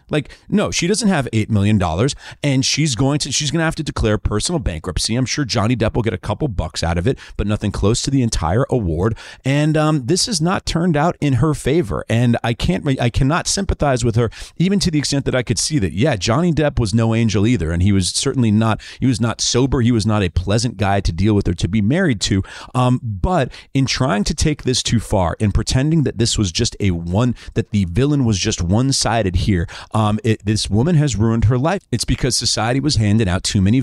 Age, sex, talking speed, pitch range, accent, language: 40-59, male, 240 wpm, 100-135 Hz, American, English